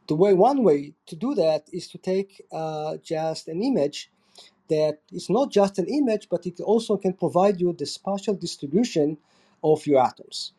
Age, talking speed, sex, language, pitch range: 40-59, 180 wpm, male, English, 145-195 Hz